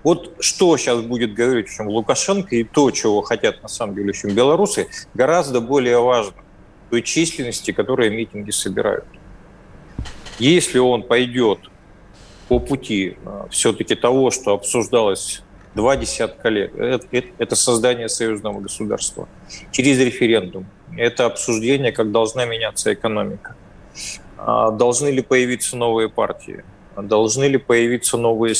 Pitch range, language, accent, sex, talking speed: 105-130 Hz, Russian, native, male, 120 wpm